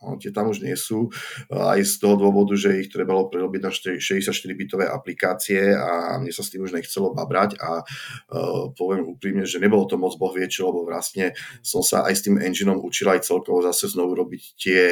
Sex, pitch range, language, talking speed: male, 95-120 Hz, Czech, 195 wpm